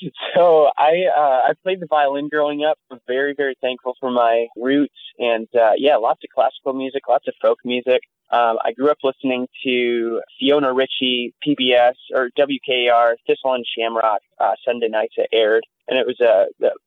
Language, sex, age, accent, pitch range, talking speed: English, male, 20-39, American, 115-135 Hz, 180 wpm